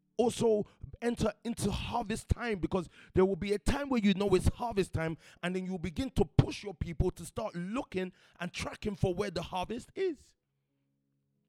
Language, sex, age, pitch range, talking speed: English, male, 30-49, 160-215 Hz, 185 wpm